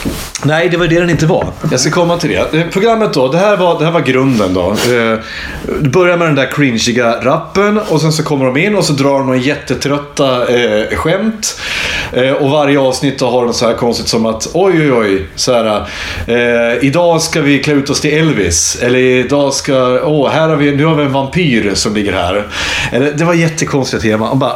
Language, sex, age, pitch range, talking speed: Swedish, male, 30-49, 120-165 Hz, 230 wpm